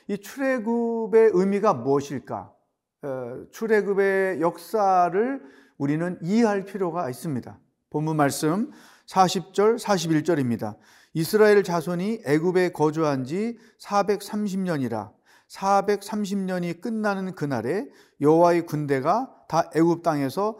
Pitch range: 160-210 Hz